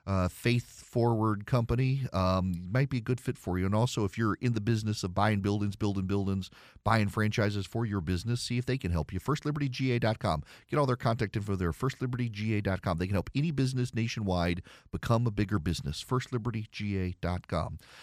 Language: English